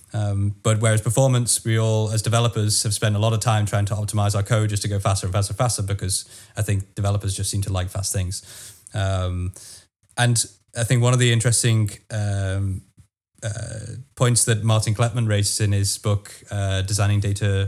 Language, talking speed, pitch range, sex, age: English, 195 wpm, 100-115 Hz, male, 20-39